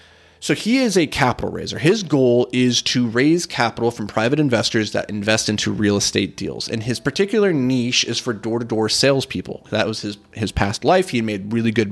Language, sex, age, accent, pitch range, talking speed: English, male, 30-49, American, 110-140 Hz, 195 wpm